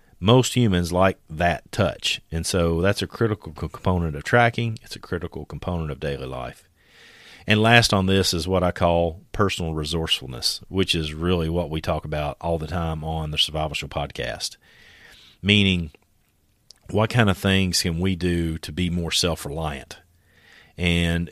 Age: 40-59